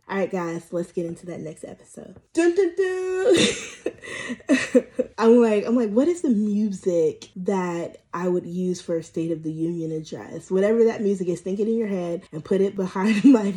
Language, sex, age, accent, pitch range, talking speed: English, female, 20-39, American, 175-225 Hz, 200 wpm